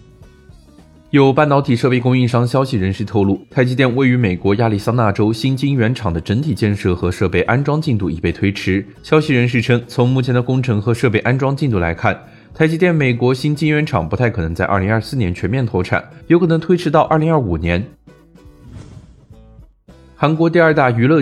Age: 20-39